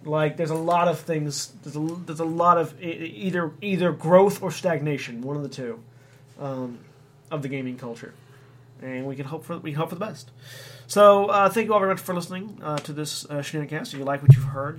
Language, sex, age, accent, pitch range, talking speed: English, male, 30-49, American, 135-165 Hz, 235 wpm